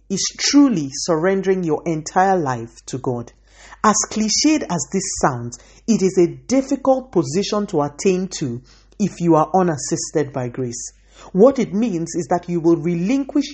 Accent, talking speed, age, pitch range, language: Nigerian, 155 wpm, 40-59, 150-210 Hz, English